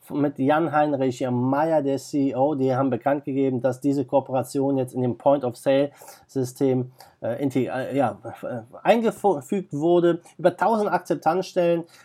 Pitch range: 140-180 Hz